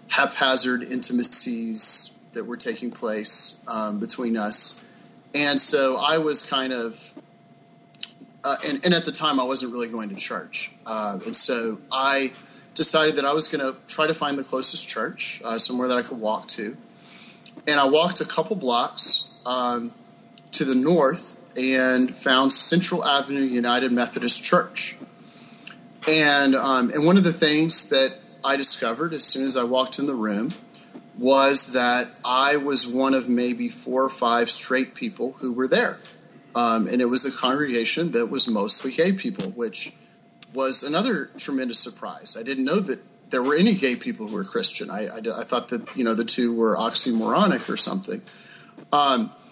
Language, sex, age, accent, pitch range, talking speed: English, male, 30-49, American, 125-170 Hz, 170 wpm